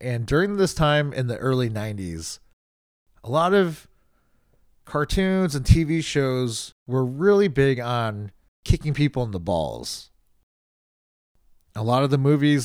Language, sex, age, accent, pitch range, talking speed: English, male, 30-49, American, 95-130 Hz, 140 wpm